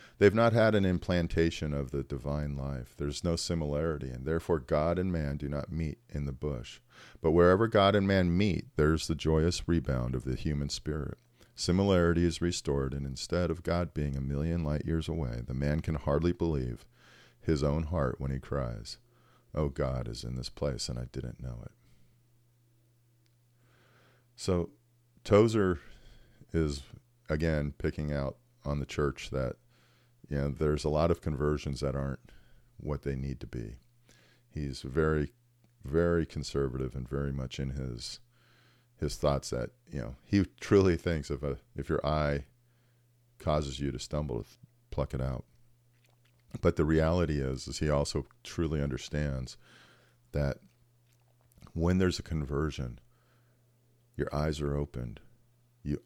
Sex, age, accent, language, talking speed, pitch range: male, 40-59, American, English, 155 wpm, 70-100 Hz